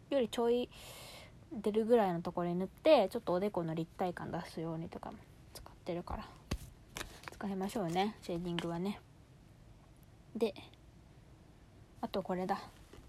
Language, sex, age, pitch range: Japanese, female, 20-39, 180-235 Hz